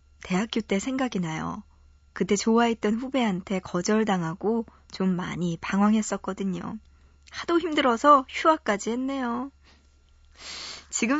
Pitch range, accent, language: 185-265 Hz, native, Korean